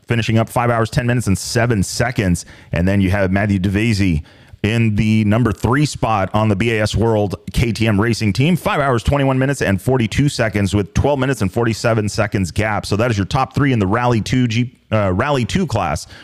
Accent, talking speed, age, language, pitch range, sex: American, 205 wpm, 30-49, English, 105-125 Hz, male